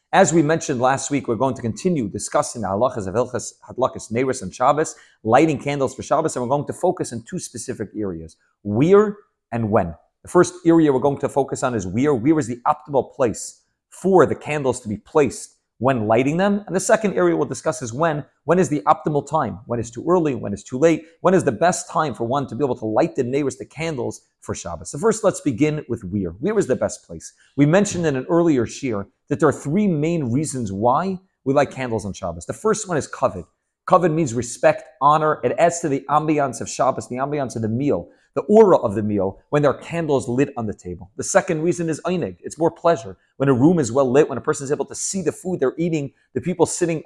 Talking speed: 235 wpm